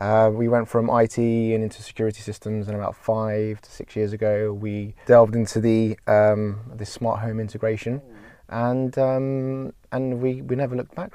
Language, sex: English, male